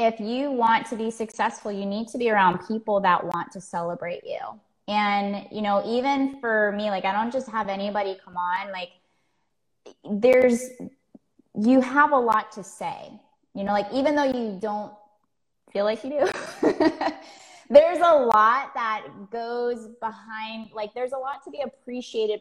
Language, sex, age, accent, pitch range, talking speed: English, female, 20-39, American, 190-235 Hz, 170 wpm